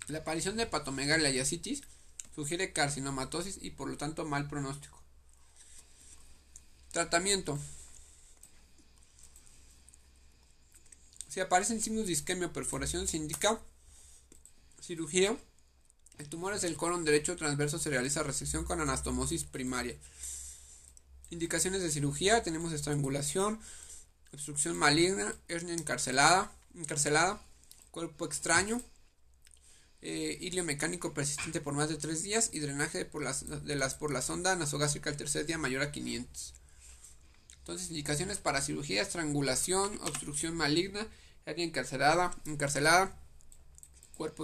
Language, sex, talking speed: Spanish, male, 115 wpm